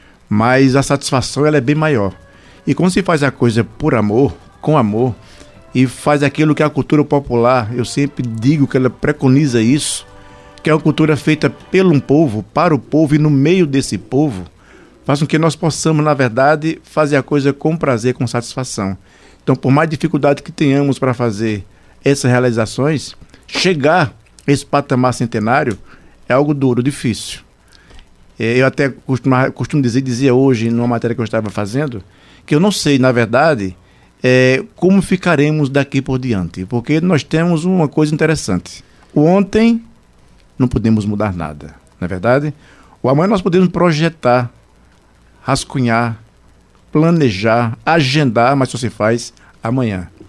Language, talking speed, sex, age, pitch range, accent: Portuguese, 155 wpm, male, 60-79, 115-150 Hz, Brazilian